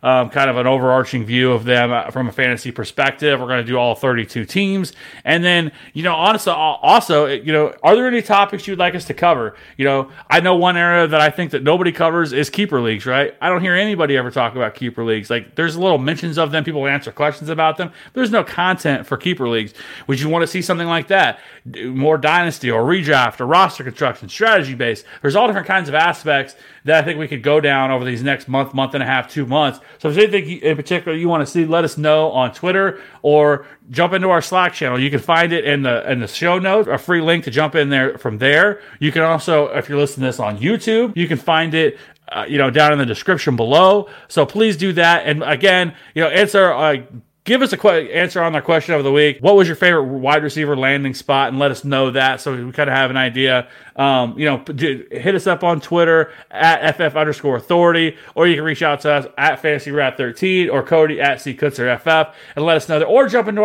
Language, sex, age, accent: English, male, 30-49, American